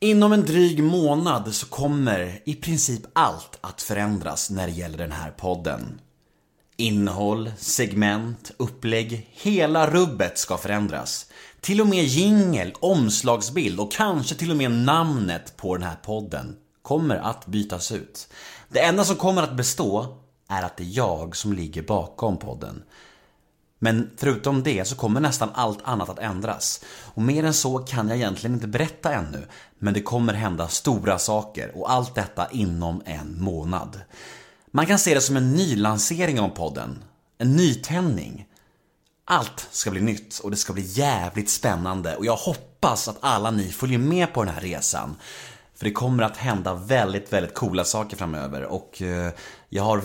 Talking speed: 165 wpm